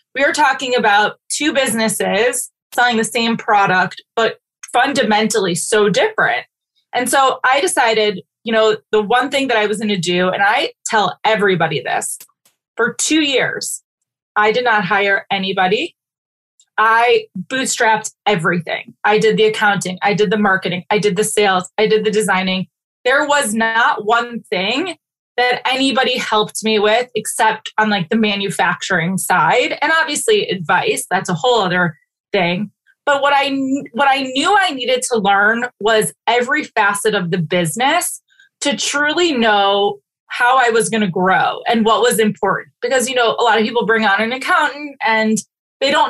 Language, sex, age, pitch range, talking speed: English, female, 20-39, 205-260 Hz, 165 wpm